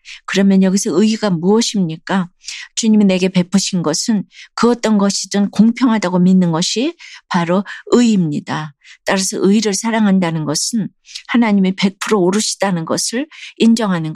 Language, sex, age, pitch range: Korean, female, 40-59, 175-215 Hz